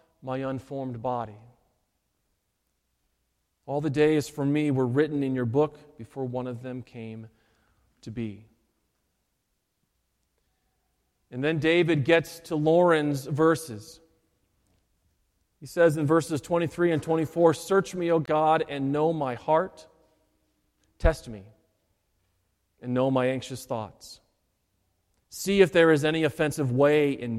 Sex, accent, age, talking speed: male, American, 40-59, 125 wpm